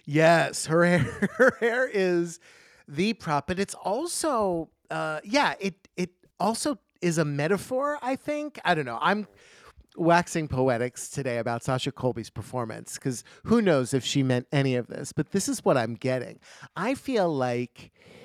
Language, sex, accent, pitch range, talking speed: English, male, American, 130-180 Hz, 165 wpm